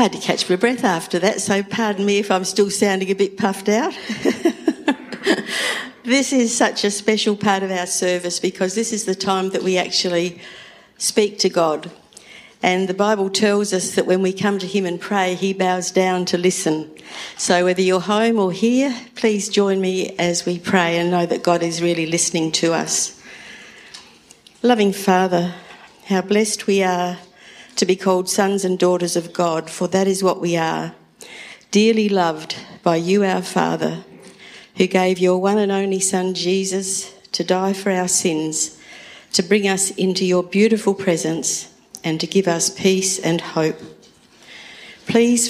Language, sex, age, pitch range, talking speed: English, female, 60-79, 175-200 Hz, 175 wpm